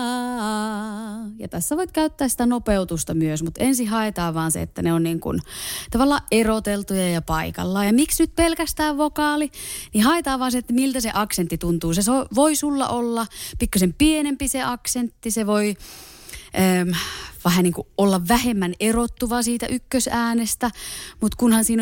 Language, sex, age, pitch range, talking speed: Finnish, female, 20-39, 185-295 Hz, 150 wpm